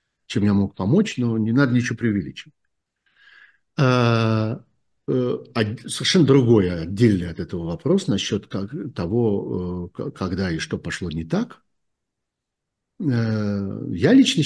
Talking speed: 105 wpm